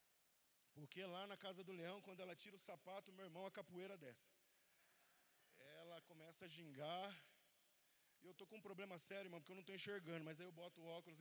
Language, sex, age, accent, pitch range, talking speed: Portuguese, male, 20-39, Brazilian, 160-210 Hz, 210 wpm